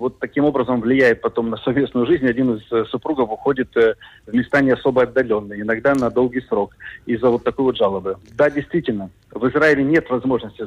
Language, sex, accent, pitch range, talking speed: Russian, male, native, 115-150 Hz, 185 wpm